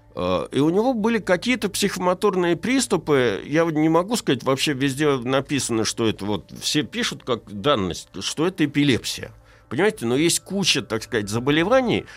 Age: 60-79